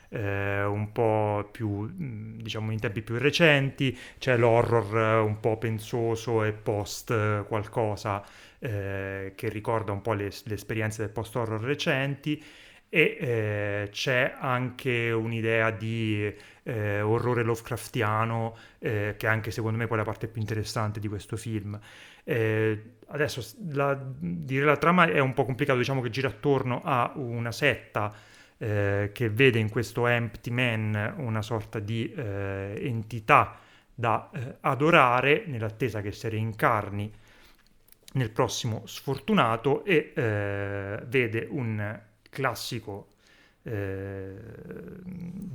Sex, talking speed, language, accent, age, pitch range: male, 125 wpm, Italian, native, 30-49, 105-125 Hz